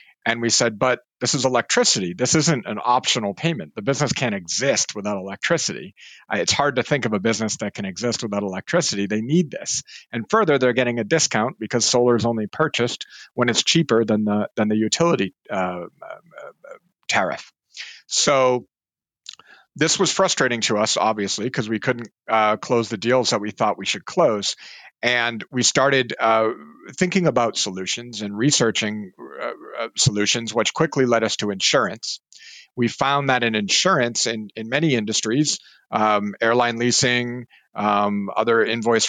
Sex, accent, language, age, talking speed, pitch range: male, American, English, 50-69, 165 wpm, 105-130 Hz